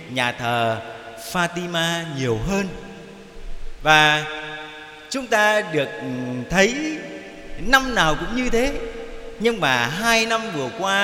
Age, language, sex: 30-49, Vietnamese, male